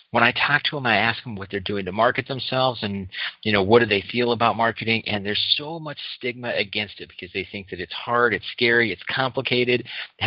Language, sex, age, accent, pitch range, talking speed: English, male, 40-59, American, 100-125 Hz, 240 wpm